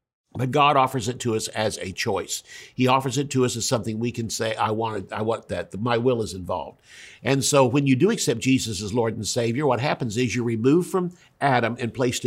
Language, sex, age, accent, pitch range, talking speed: English, male, 50-69, American, 115-135 Hz, 235 wpm